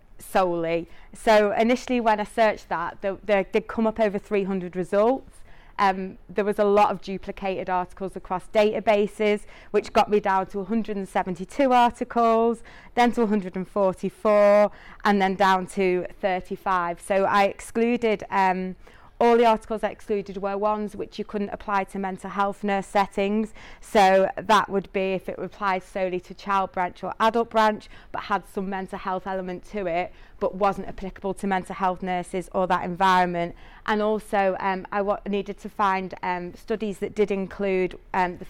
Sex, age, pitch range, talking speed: female, 30-49, 185-210 Hz, 165 wpm